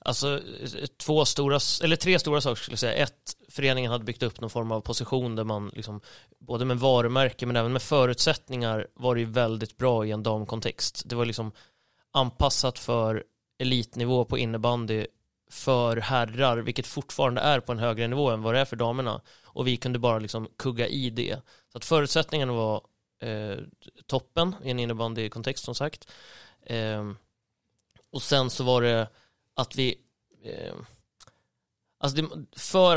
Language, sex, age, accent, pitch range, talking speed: Swedish, male, 30-49, native, 115-135 Hz, 165 wpm